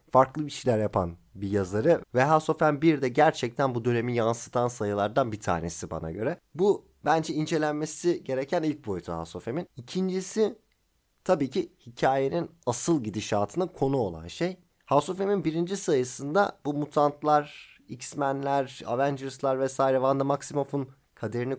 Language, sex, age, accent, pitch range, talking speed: Turkish, male, 30-49, native, 110-155 Hz, 140 wpm